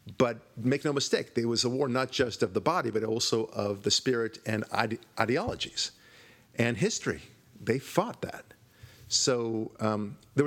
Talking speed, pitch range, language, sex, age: 160 wpm, 105-130 Hz, English, male, 50-69